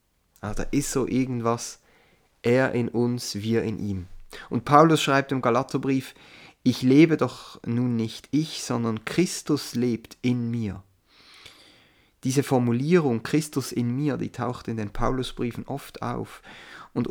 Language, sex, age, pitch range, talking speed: German, male, 30-49, 110-140 Hz, 135 wpm